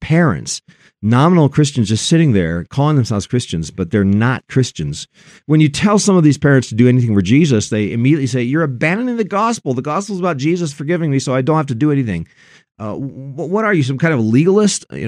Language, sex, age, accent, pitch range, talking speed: English, male, 50-69, American, 110-155 Hz, 225 wpm